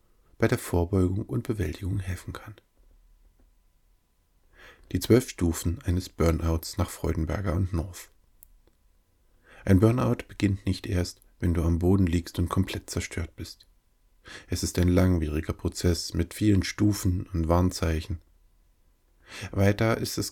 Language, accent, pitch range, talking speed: German, German, 85-100 Hz, 125 wpm